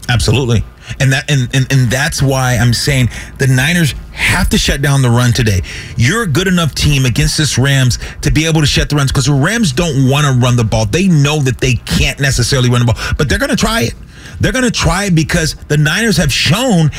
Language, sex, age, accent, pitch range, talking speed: English, male, 40-59, American, 135-190 Hz, 240 wpm